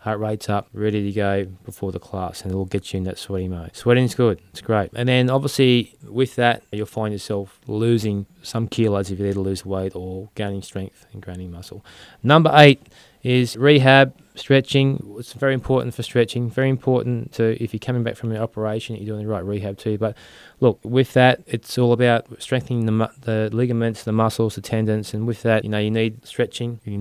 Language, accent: English, Australian